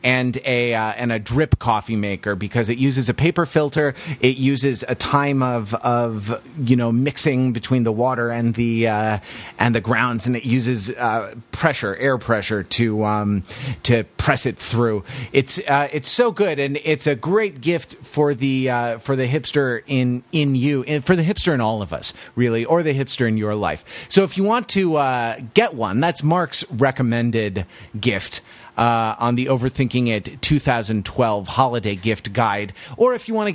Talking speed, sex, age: 190 wpm, male, 30-49